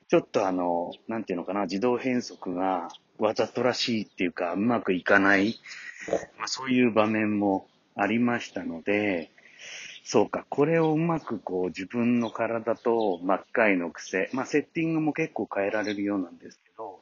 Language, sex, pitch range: Japanese, male, 95-135 Hz